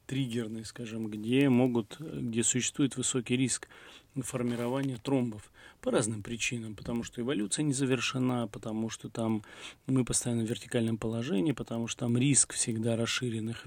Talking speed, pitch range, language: 140 wpm, 115-130 Hz, Russian